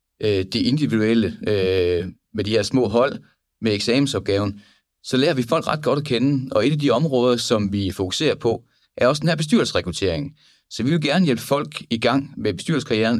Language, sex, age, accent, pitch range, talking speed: Danish, male, 30-49, native, 100-125 Hz, 185 wpm